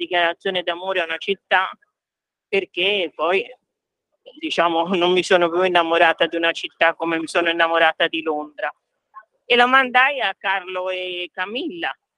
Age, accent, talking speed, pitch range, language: 50-69, native, 145 wpm, 180-230 Hz, Italian